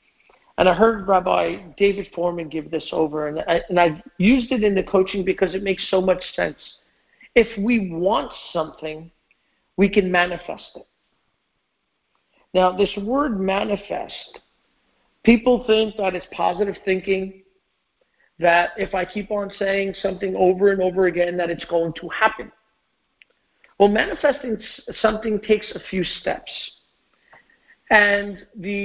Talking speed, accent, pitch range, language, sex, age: 135 wpm, American, 185-230 Hz, English, male, 50-69